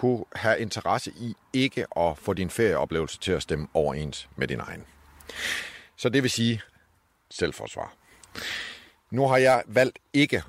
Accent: native